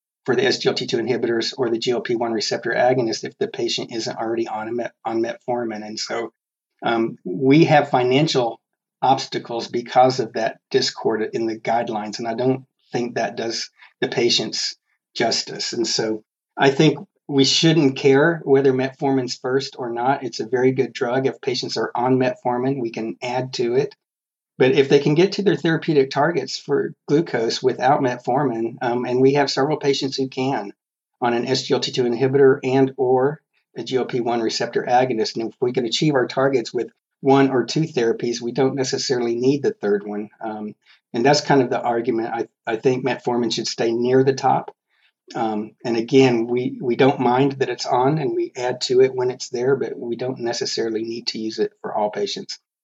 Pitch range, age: 120-145 Hz, 40-59